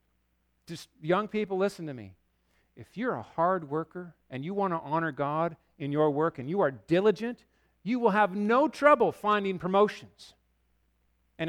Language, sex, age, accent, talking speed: English, male, 50-69, American, 160 wpm